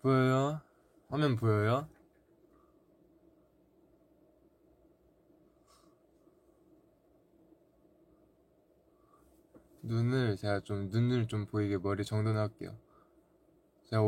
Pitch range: 100-150 Hz